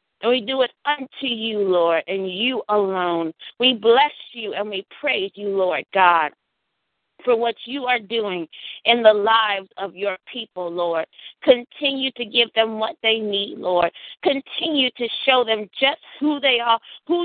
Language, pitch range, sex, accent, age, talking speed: English, 195-260 Hz, female, American, 40-59, 165 wpm